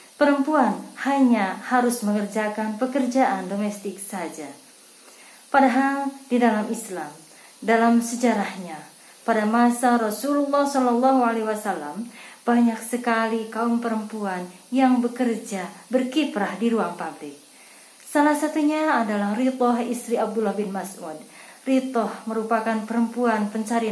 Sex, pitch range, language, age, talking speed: female, 215-260 Hz, Indonesian, 20-39, 105 wpm